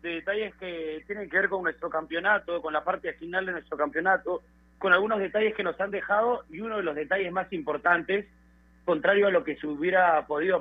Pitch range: 160-205 Hz